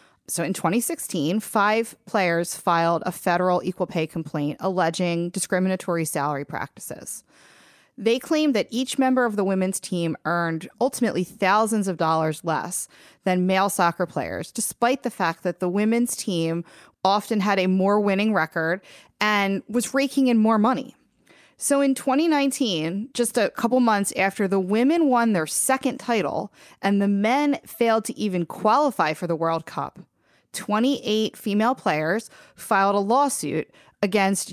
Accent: American